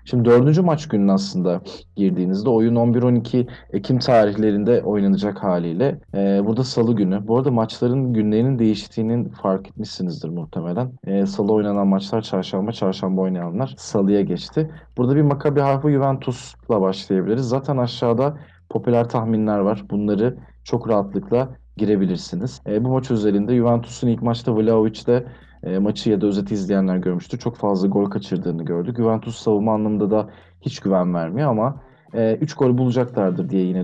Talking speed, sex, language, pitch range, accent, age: 145 wpm, male, Turkish, 100-125 Hz, native, 40-59